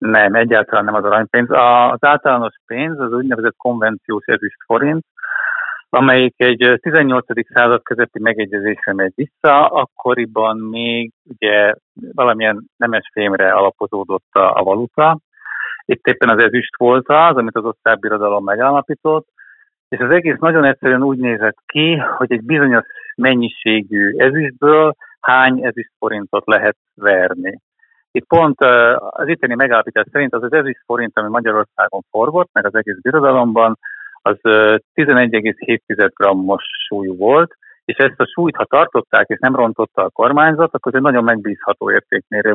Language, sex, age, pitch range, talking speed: Hungarian, male, 50-69, 110-150 Hz, 135 wpm